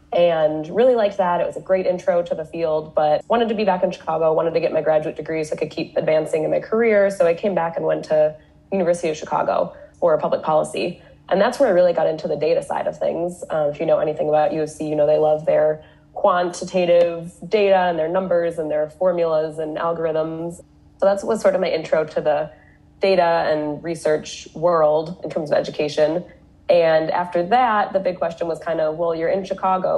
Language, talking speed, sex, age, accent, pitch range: English, 220 wpm, female, 20-39, American, 155-190 Hz